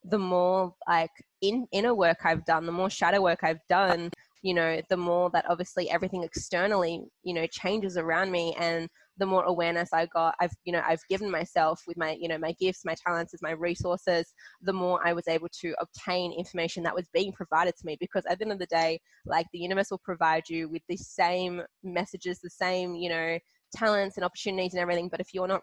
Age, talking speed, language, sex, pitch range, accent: 20-39, 220 wpm, English, female, 170-185 Hz, Australian